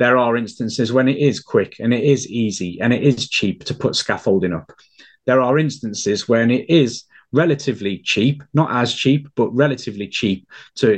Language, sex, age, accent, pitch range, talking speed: English, male, 30-49, British, 110-145 Hz, 185 wpm